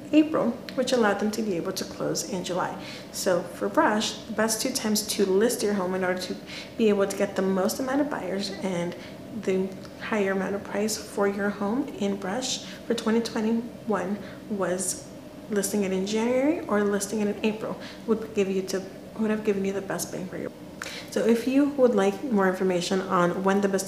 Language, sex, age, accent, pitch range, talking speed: English, female, 30-49, American, 190-230 Hz, 205 wpm